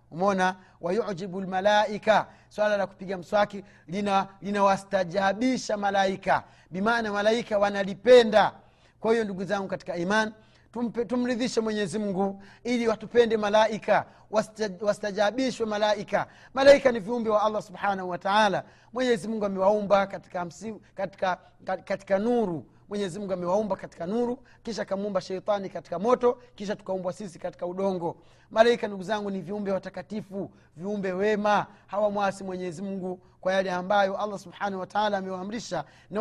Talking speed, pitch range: 135 wpm, 185-215 Hz